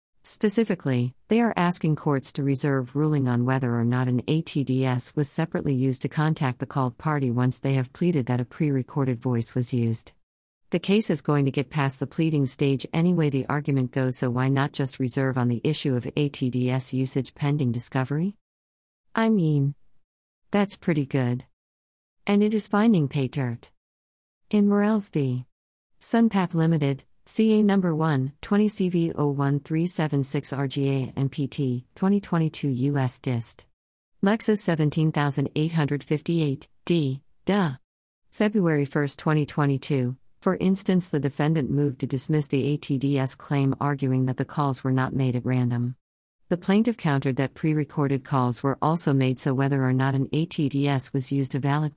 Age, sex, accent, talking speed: 40-59, female, American, 155 wpm